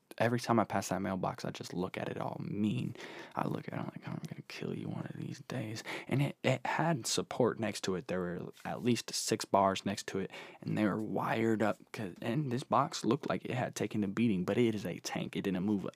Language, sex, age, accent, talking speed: English, male, 10-29, American, 260 wpm